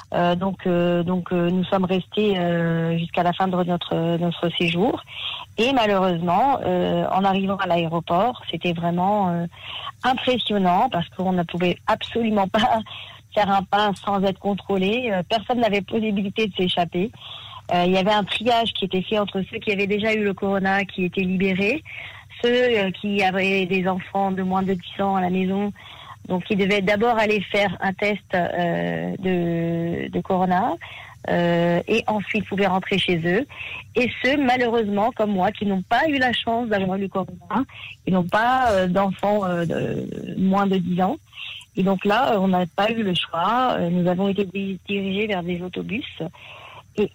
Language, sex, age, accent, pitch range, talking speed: French, female, 40-59, French, 175-210 Hz, 175 wpm